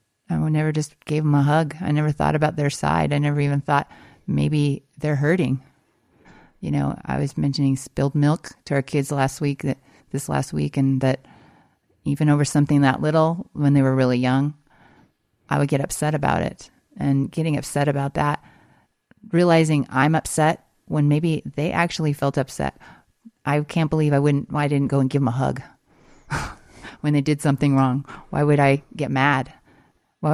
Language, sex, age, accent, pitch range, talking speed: English, female, 30-49, American, 135-155 Hz, 185 wpm